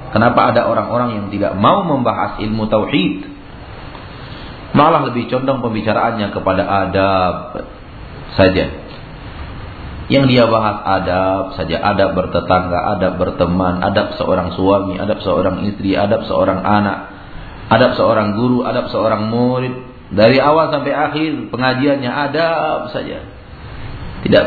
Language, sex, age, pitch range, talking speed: Malay, male, 40-59, 95-125 Hz, 120 wpm